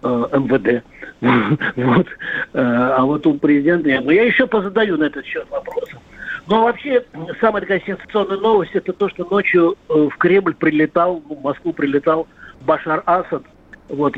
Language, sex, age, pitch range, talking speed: Russian, male, 50-69, 140-195 Hz, 140 wpm